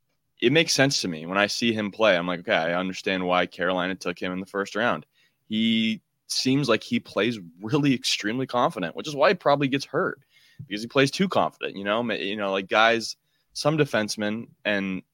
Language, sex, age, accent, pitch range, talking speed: English, male, 20-39, American, 100-135 Hz, 205 wpm